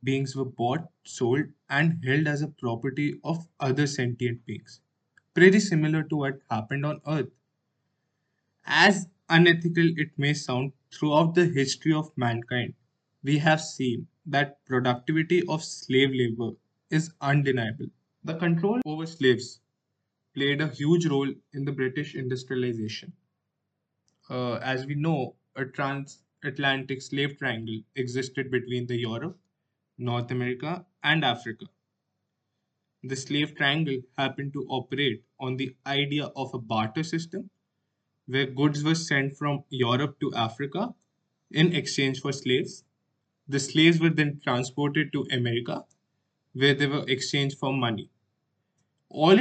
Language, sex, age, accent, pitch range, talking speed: English, male, 20-39, Indian, 130-155 Hz, 130 wpm